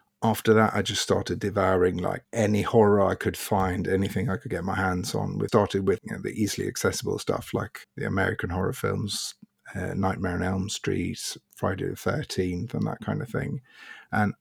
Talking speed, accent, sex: 195 wpm, British, male